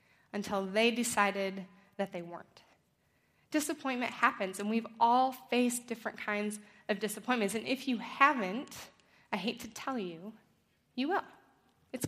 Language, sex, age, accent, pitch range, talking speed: English, female, 20-39, American, 205-255 Hz, 140 wpm